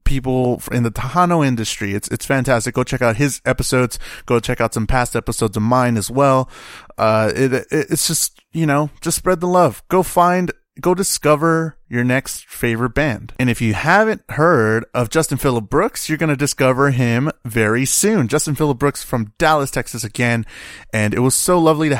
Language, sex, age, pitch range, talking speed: English, male, 30-49, 115-145 Hz, 195 wpm